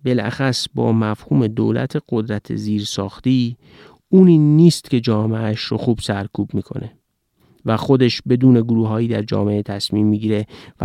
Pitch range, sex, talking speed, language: 110-145 Hz, male, 140 wpm, Persian